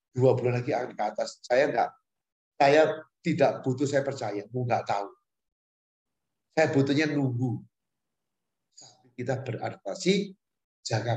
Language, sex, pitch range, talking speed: Indonesian, male, 115-140 Hz, 120 wpm